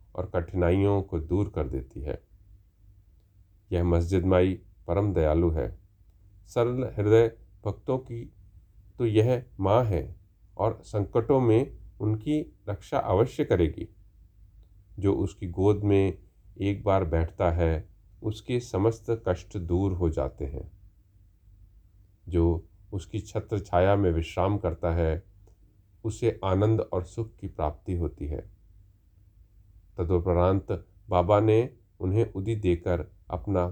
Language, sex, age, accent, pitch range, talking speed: Hindi, male, 40-59, native, 90-110 Hz, 115 wpm